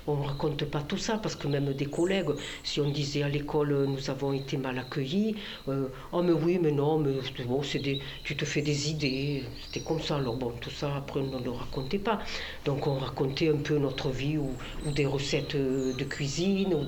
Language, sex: French, female